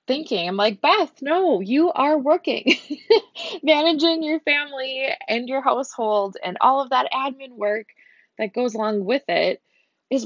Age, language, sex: 20-39, English, female